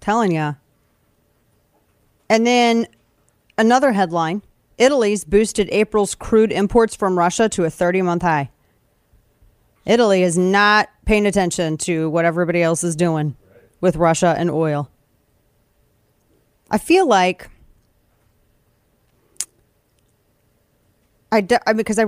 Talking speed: 110 wpm